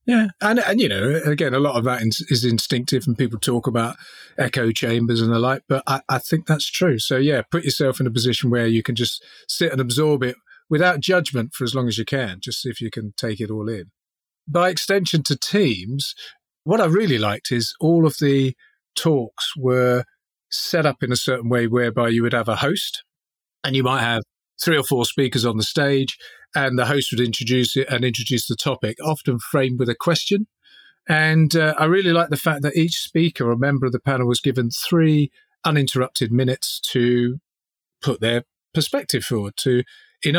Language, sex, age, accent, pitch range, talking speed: English, male, 40-59, British, 120-155 Hz, 205 wpm